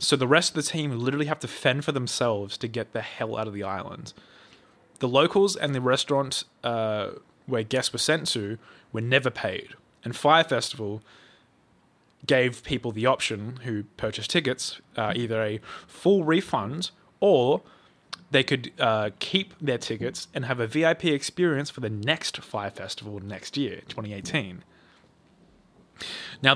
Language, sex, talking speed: English, male, 160 wpm